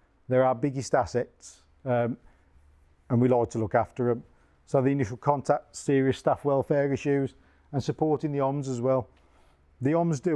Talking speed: 170 wpm